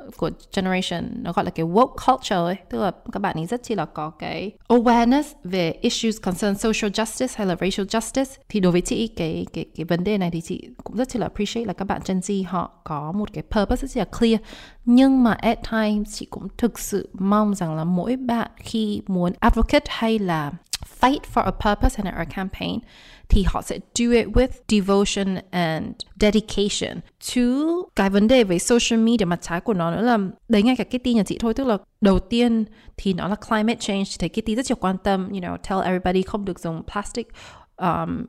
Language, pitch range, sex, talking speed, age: Vietnamese, 190-235 Hz, female, 215 wpm, 20-39